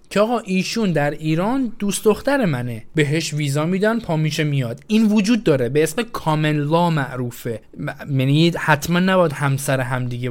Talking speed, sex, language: 150 wpm, male, Persian